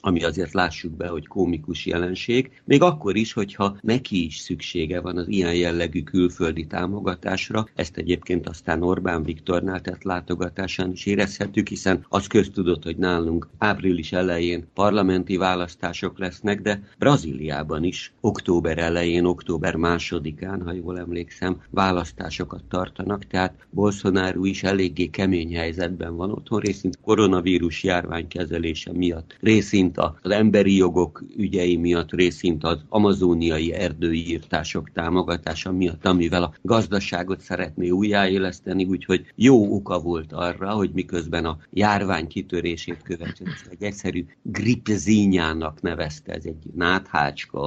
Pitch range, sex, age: 85-95 Hz, male, 50-69